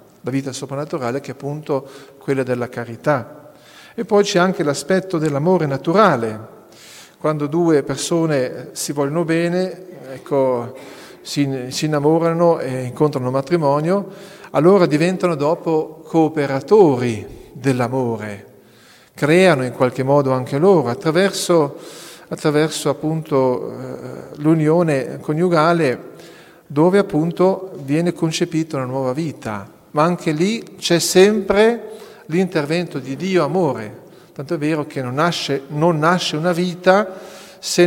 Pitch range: 135-175 Hz